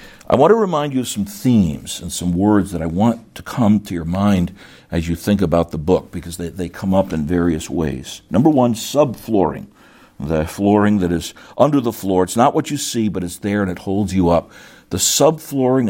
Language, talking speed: English, 220 wpm